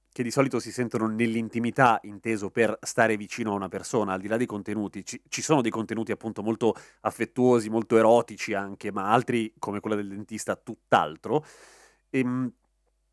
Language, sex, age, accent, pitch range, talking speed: Italian, male, 30-49, native, 105-125 Hz, 165 wpm